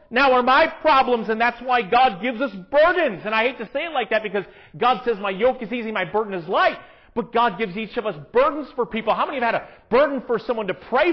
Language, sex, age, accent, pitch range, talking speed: English, male, 40-59, American, 200-275 Hz, 265 wpm